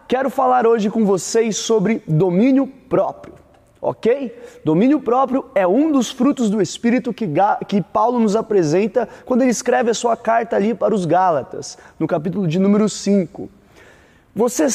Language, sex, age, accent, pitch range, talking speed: Portuguese, male, 20-39, Brazilian, 195-250 Hz, 155 wpm